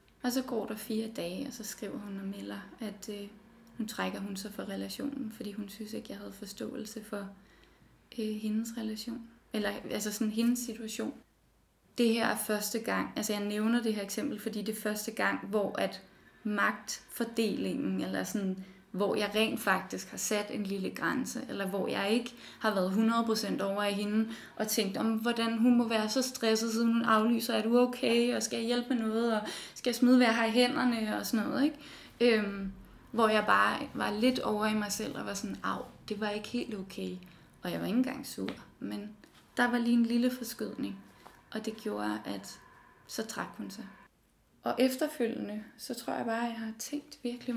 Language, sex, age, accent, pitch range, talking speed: Danish, female, 20-39, native, 210-235 Hz, 195 wpm